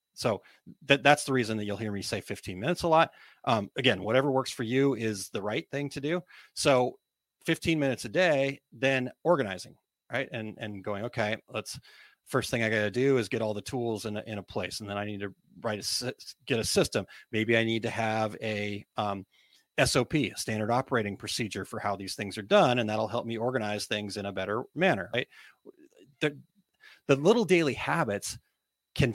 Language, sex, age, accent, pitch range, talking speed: English, male, 30-49, American, 105-135 Hz, 200 wpm